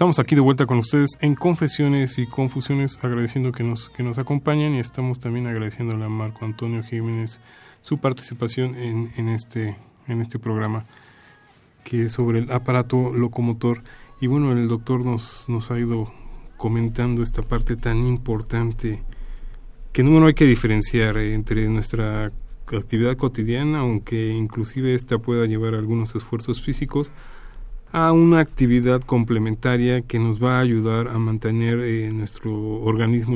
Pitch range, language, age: 110-125 Hz, Spanish, 20-39